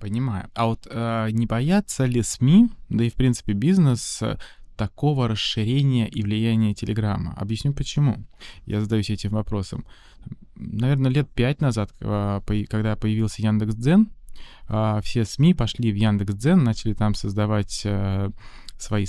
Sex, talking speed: male, 145 wpm